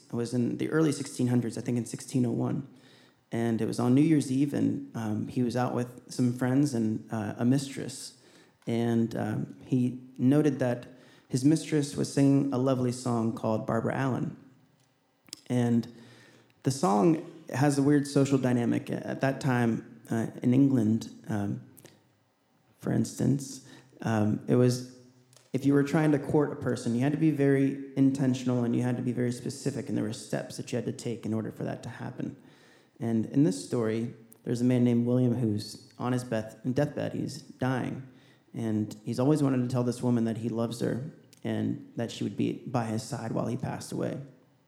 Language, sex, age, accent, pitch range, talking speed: English, male, 30-49, American, 120-140 Hz, 185 wpm